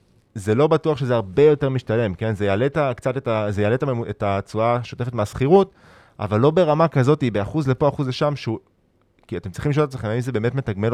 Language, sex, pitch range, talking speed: Hebrew, male, 105-135 Hz, 190 wpm